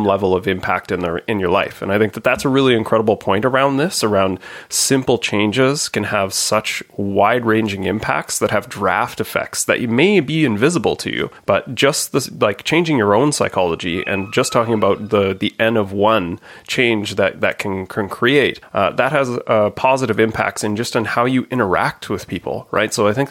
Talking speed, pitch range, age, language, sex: 205 wpm, 100-115 Hz, 30-49, English, male